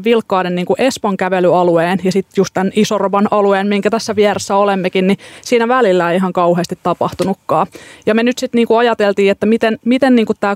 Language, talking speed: Finnish, 190 wpm